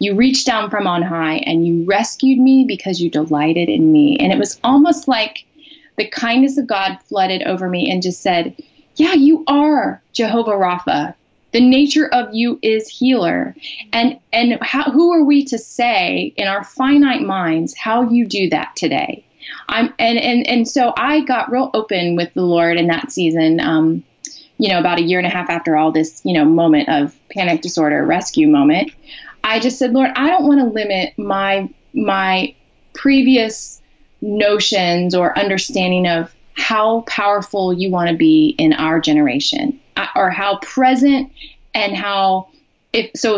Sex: female